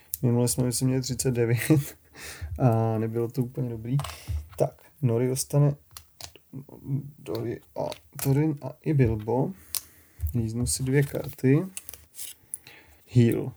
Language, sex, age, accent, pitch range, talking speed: Czech, male, 30-49, native, 110-135 Hz, 95 wpm